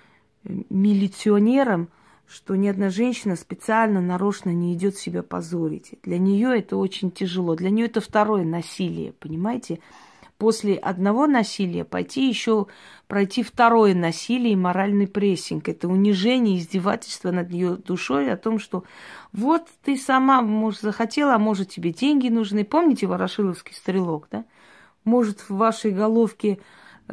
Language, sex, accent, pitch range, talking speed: Russian, female, native, 185-230 Hz, 130 wpm